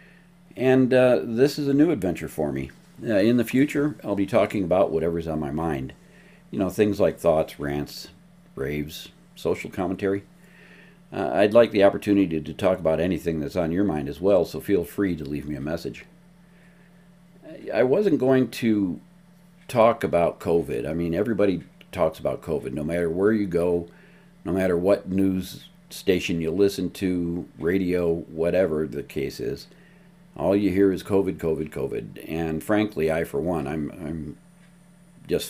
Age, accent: 50-69, American